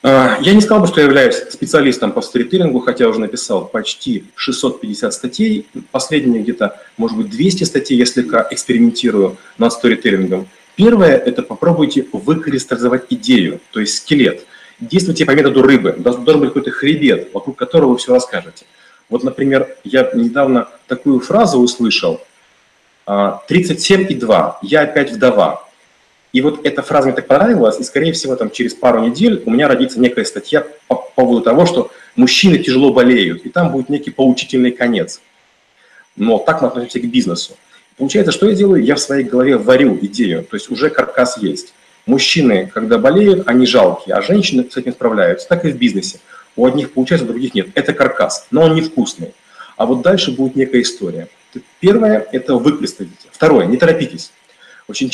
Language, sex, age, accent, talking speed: Russian, male, 30-49, native, 170 wpm